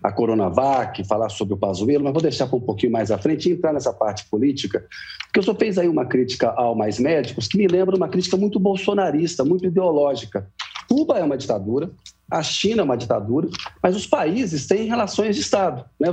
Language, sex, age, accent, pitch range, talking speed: Portuguese, male, 40-59, Brazilian, 130-195 Hz, 205 wpm